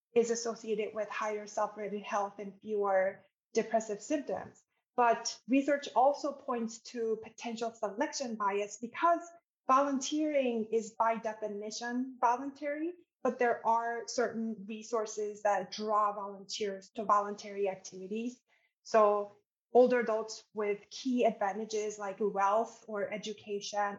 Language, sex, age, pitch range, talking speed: English, female, 20-39, 200-230 Hz, 115 wpm